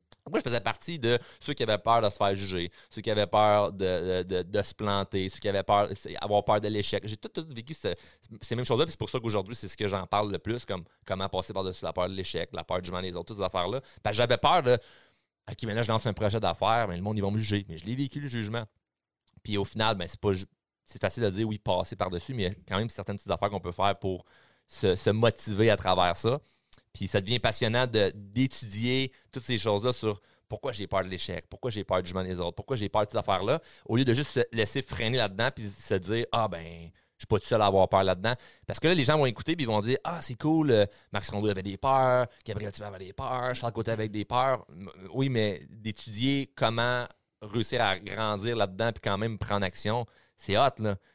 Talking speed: 260 wpm